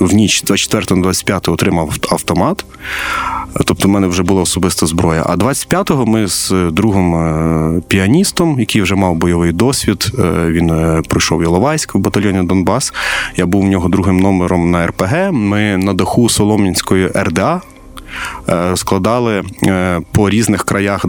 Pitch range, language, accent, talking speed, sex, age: 90-115 Hz, Ukrainian, native, 135 wpm, male, 20-39